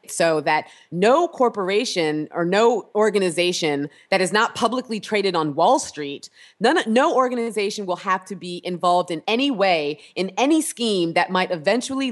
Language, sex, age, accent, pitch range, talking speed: English, female, 30-49, American, 175-240 Hz, 160 wpm